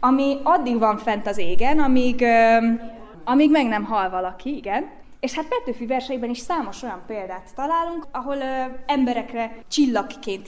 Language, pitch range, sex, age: Hungarian, 215-285 Hz, female, 20-39